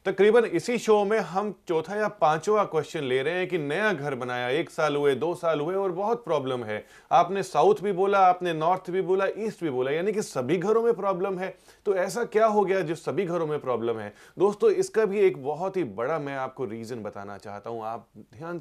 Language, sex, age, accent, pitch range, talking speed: Hindi, male, 30-49, native, 130-195 Hz, 225 wpm